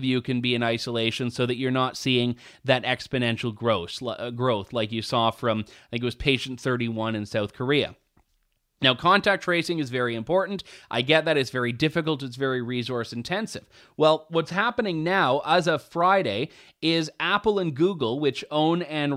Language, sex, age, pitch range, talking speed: English, male, 30-49, 130-170 Hz, 170 wpm